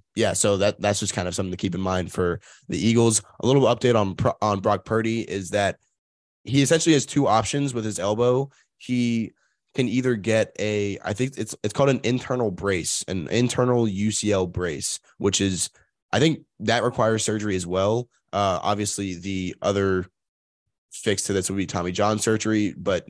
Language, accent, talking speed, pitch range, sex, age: English, American, 185 wpm, 95-110 Hz, male, 20-39